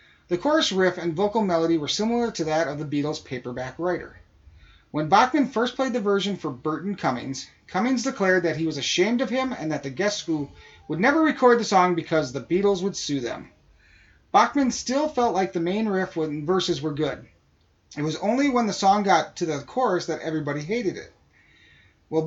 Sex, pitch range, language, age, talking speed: male, 150-200 Hz, English, 30-49, 200 wpm